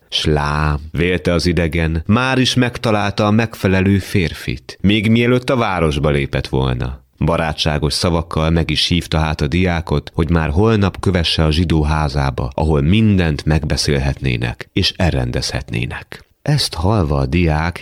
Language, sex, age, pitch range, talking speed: Hungarian, male, 30-49, 70-95 Hz, 130 wpm